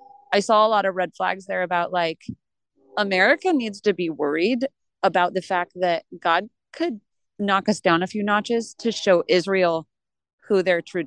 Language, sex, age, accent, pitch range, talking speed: English, female, 30-49, American, 165-205 Hz, 180 wpm